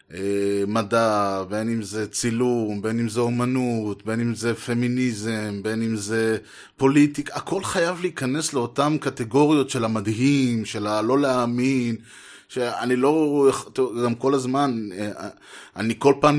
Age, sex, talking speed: 30-49, male, 130 wpm